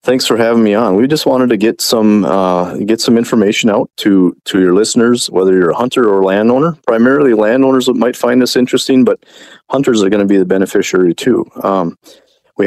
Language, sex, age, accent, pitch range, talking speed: English, male, 30-49, American, 90-110 Hz, 210 wpm